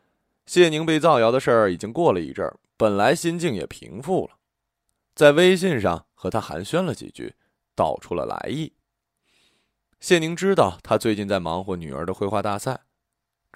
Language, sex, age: Chinese, male, 20-39